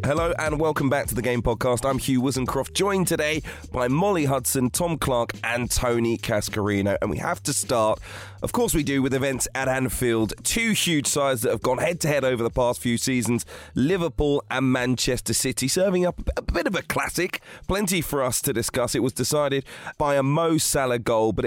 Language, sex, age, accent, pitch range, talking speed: English, male, 30-49, British, 110-145 Hz, 200 wpm